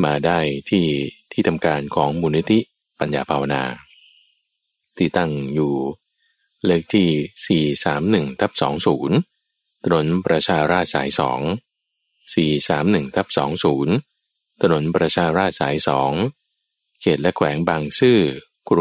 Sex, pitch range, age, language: male, 75-85 Hz, 20-39, Thai